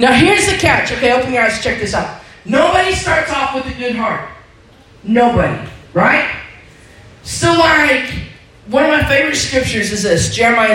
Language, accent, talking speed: English, American, 165 wpm